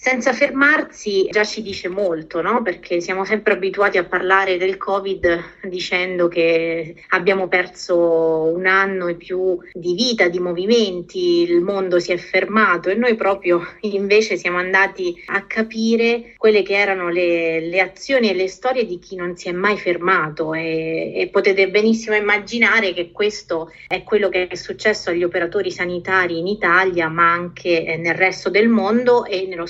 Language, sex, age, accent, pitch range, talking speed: Italian, female, 30-49, native, 175-205 Hz, 165 wpm